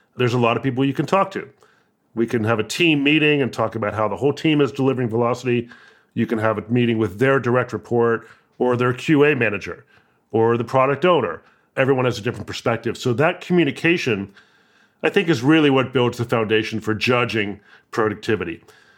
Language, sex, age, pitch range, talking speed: English, male, 40-59, 115-145 Hz, 195 wpm